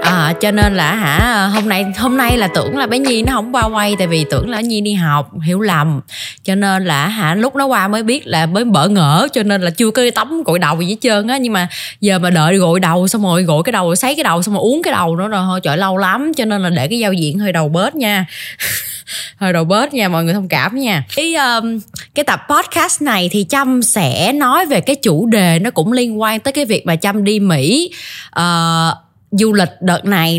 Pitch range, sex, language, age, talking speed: 165-225 Hz, female, Vietnamese, 20-39, 255 wpm